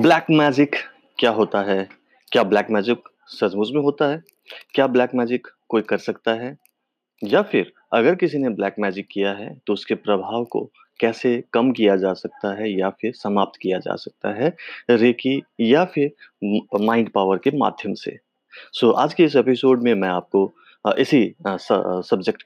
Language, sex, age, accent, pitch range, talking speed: Hindi, male, 30-49, native, 105-135 Hz, 170 wpm